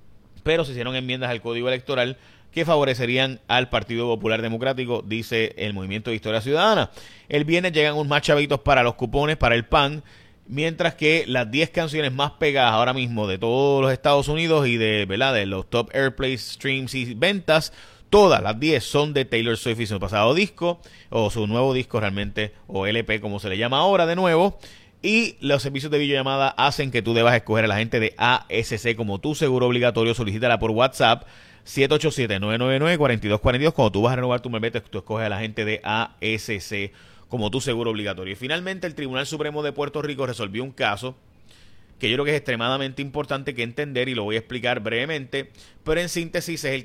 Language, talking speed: Spanish, 195 wpm